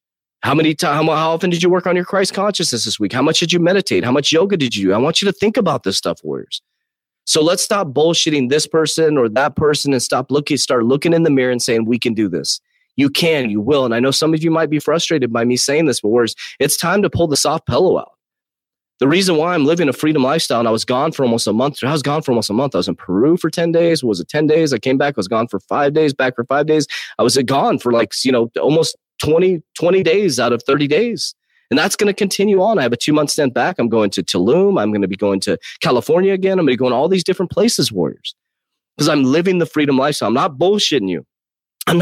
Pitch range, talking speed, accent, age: 125-165 Hz, 275 wpm, American, 30-49